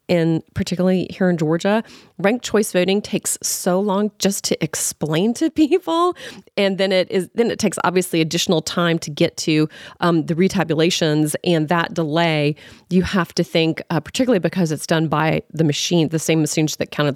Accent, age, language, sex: American, 30-49, English, female